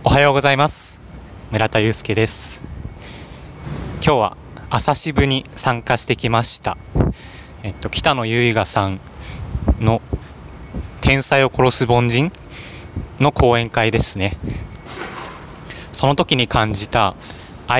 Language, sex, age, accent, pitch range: Japanese, male, 20-39, native, 100-130 Hz